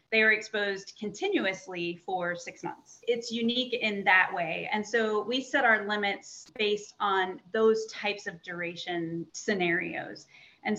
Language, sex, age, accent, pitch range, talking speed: English, female, 30-49, American, 180-220 Hz, 145 wpm